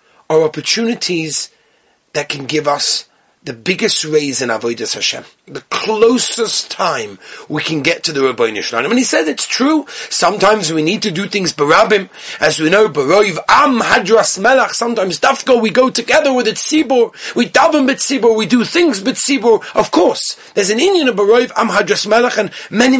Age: 30-49